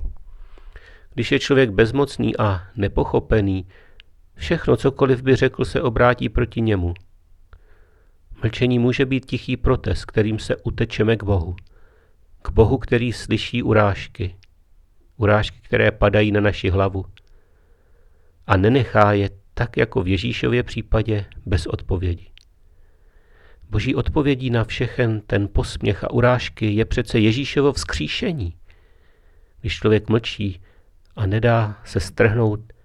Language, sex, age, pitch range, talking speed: Czech, male, 40-59, 85-115 Hz, 115 wpm